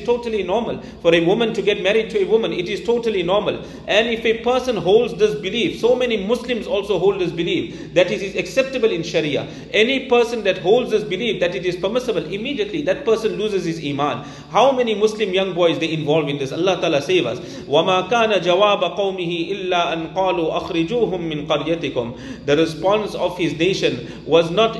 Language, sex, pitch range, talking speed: English, male, 180-235 Hz, 170 wpm